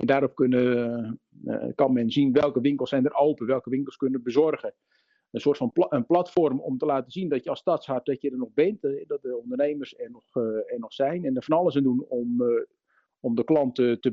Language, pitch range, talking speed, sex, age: Dutch, 120-160 Hz, 215 wpm, male, 50-69